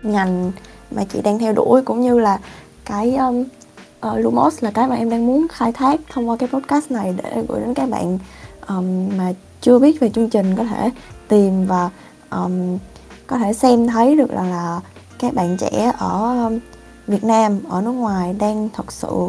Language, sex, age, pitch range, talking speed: Vietnamese, female, 20-39, 190-235 Hz, 180 wpm